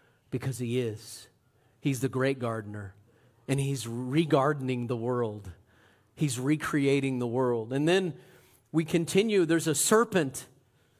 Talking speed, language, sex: 125 wpm, English, male